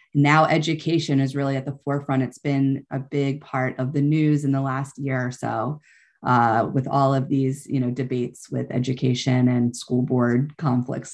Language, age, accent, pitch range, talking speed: English, 30-49, American, 140-175 Hz, 190 wpm